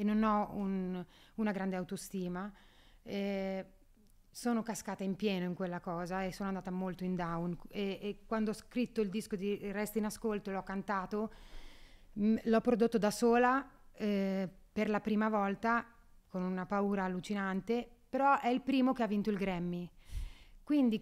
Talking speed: 170 wpm